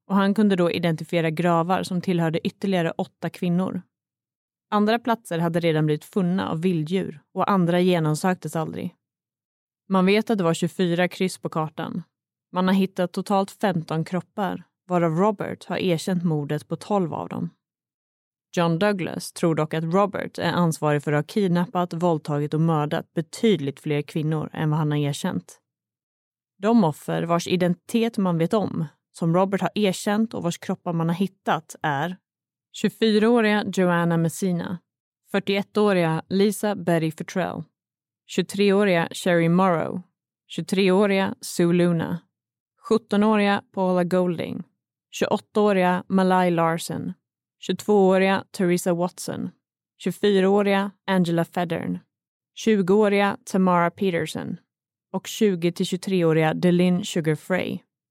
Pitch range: 165-195 Hz